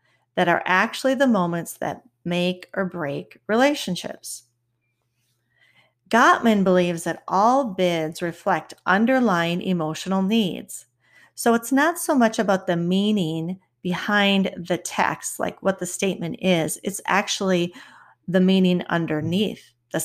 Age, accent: 40-59, American